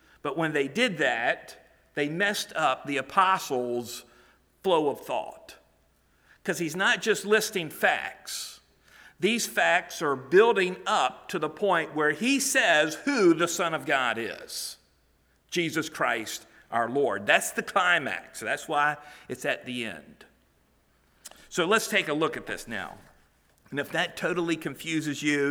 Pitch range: 135-190 Hz